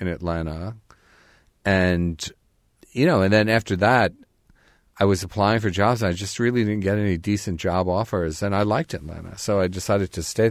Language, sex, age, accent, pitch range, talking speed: English, male, 40-59, American, 90-110 Hz, 190 wpm